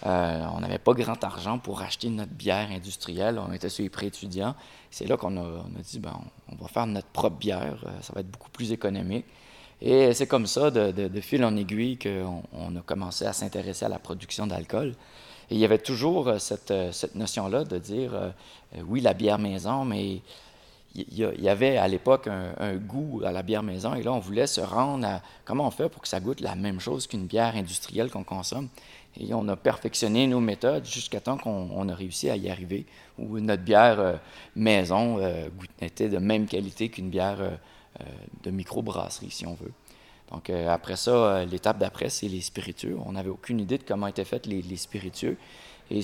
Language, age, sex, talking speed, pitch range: French, 30-49, male, 210 wpm, 95-115 Hz